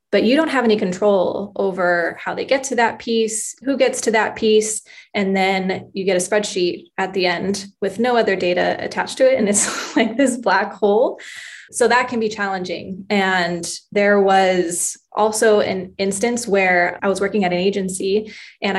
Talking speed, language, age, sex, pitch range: 190 wpm, English, 20-39, female, 190-220 Hz